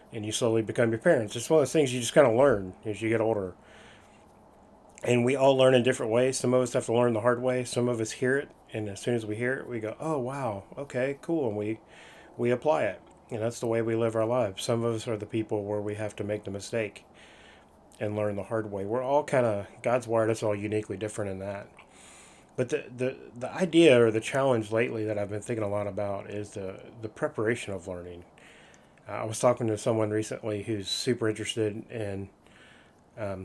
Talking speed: 235 wpm